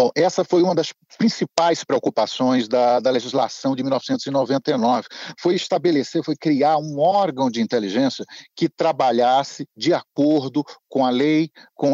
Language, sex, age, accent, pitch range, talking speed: Portuguese, male, 50-69, Brazilian, 140-200 Hz, 140 wpm